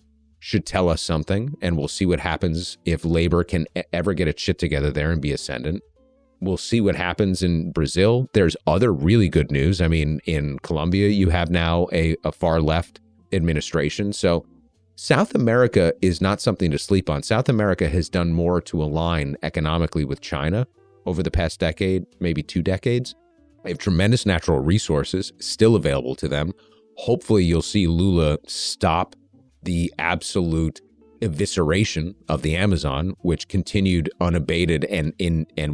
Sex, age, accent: male, 30-49, American